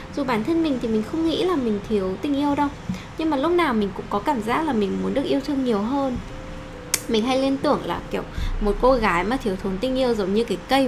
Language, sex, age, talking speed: Vietnamese, female, 10-29, 270 wpm